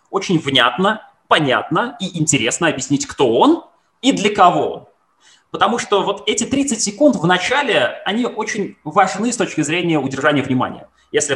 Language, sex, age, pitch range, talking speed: Russian, male, 20-39, 135-215 Hz, 155 wpm